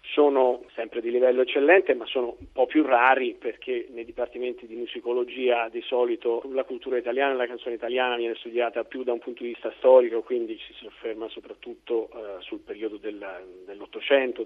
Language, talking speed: Italian, 185 wpm